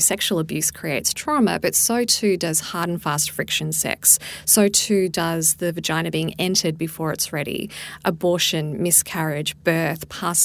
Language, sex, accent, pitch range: English, female, Australian, 160-195 Hz